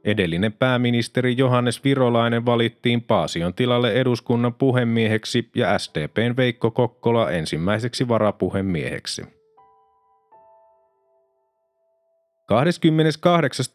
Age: 30-49